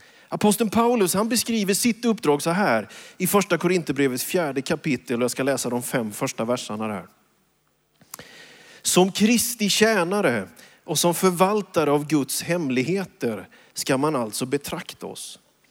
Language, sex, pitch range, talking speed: Swedish, male, 135-190 Hz, 140 wpm